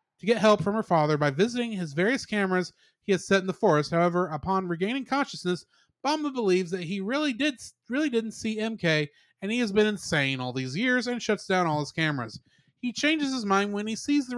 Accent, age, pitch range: American, 30-49, 155-225 Hz